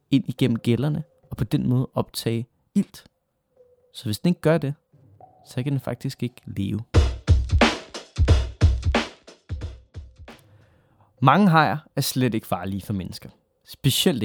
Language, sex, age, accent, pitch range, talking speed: Danish, male, 20-39, native, 115-170 Hz, 125 wpm